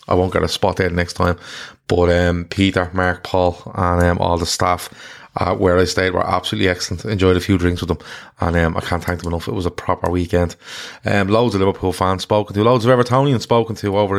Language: English